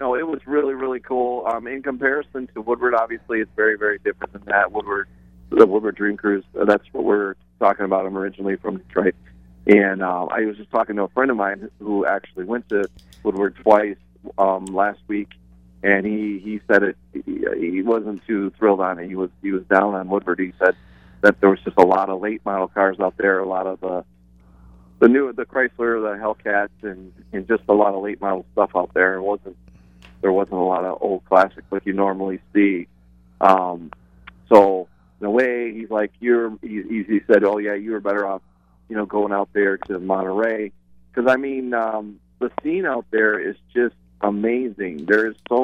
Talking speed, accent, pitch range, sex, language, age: 205 wpm, American, 95-115 Hz, male, English, 40-59